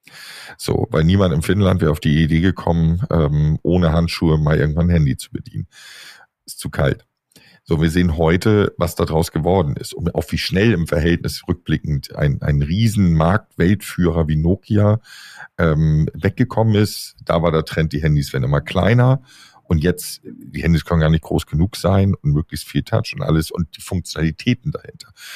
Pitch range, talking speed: 80-105 Hz, 175 wpm